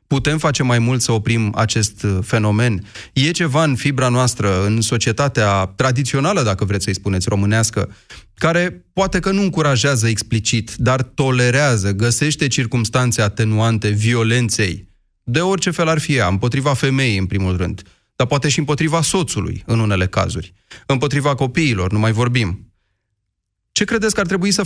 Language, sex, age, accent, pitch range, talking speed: Romanian, male, 30-49, native, 105-145 Hz, 155 wpm